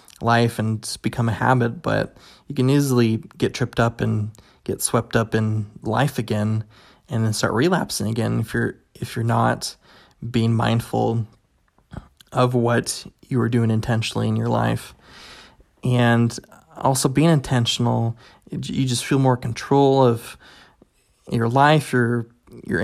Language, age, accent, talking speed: English, 20-39, American, 140 wpm